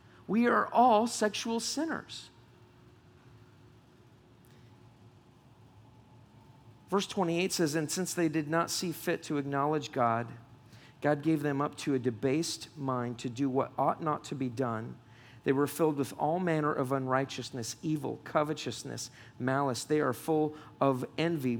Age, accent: 50-69, American